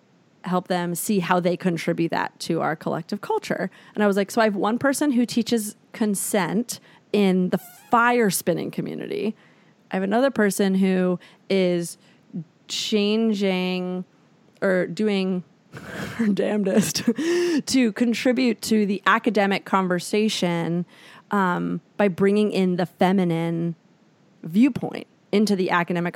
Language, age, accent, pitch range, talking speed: English, 30-49, American, 180-225 Hz, 125 wpm